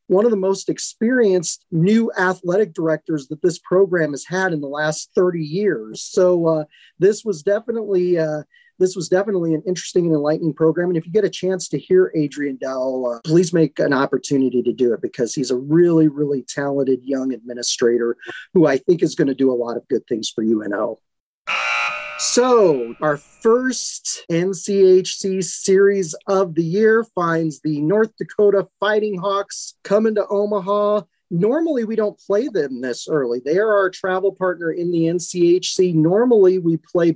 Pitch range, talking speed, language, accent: 140-190 Hz, 175 wpm, English, American